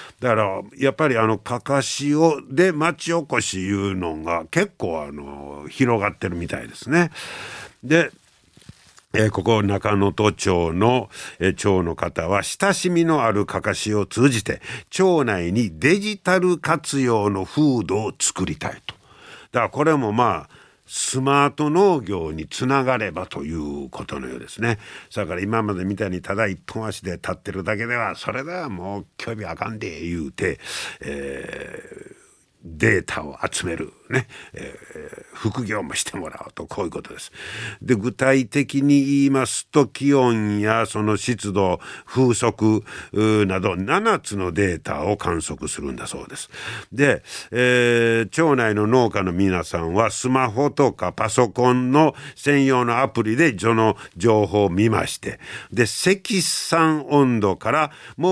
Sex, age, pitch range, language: male, 50-69, 100-140 Hz, Japanese